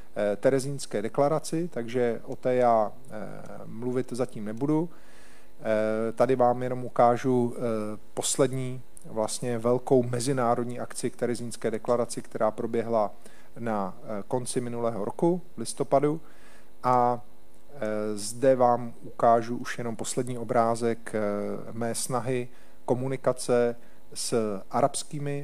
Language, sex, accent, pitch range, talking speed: Czech, male, native, 110-130 Hz, 90 wpm